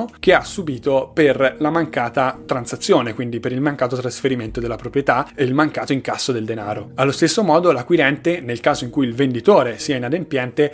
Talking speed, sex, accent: 180 wpm, male, native